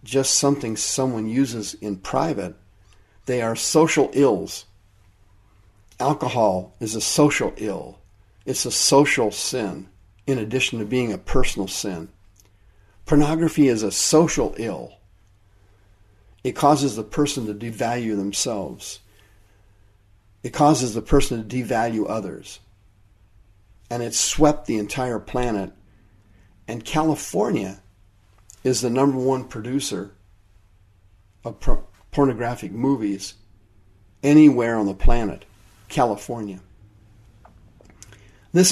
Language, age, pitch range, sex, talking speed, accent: English, 50-69, 100-125 Hz, male, 105 wpm, American